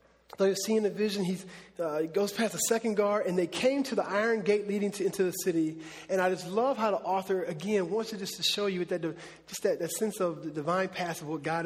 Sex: male